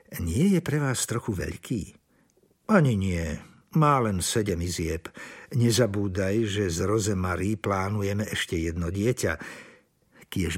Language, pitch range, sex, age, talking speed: Slovak, 100-135 Hz, male, 60-79, 120 wpm